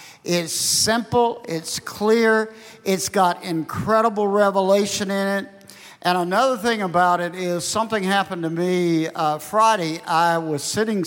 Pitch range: 165-205 Hz